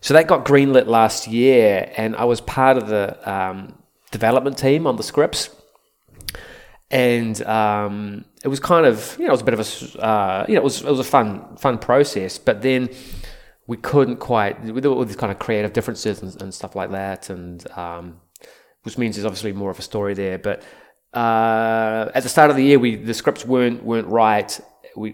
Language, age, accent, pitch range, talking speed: Danish, 20-39, Australian, 100-125 Hz, 205 wpm